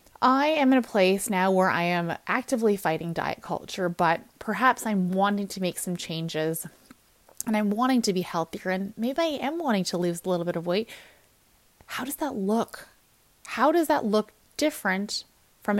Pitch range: 175-220 Hz